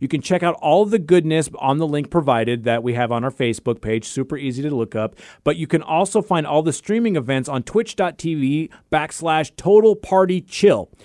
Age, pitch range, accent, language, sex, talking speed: 30-49, 135-200 Hz, American, English, male, 195 wpm